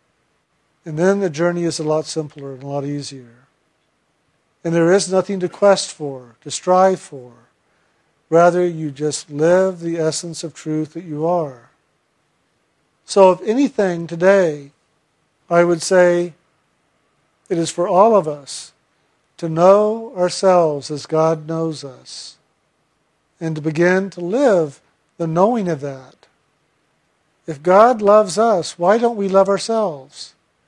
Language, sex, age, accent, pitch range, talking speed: English, male, 50-69, American, 155-195 Hz, 140 wpm